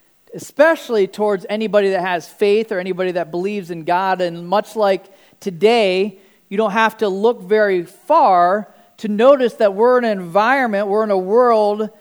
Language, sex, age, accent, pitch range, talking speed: English, male, 40-59, American, 185-220 Hz, 170 wpm